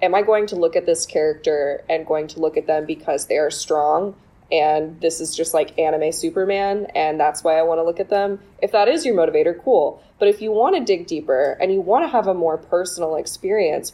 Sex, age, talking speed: female, 20-39, 240 wpm